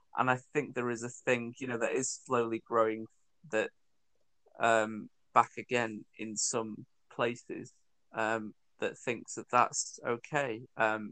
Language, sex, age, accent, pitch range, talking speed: English, male, 20-39, British, 110-125 Hz, 145 wpm